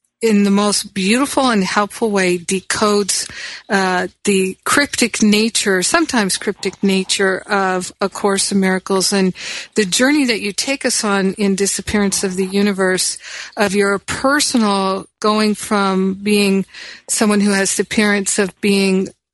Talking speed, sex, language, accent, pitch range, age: 145 wpm, female, English, American, 195-230 Hz, 50-69